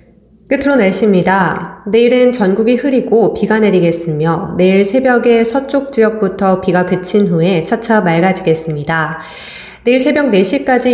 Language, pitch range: Korean, 175-225 Hz